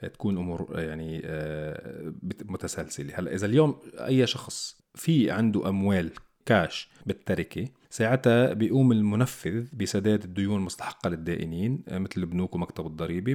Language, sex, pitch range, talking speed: Arabic, male, 95-125 Hz, 110 wpm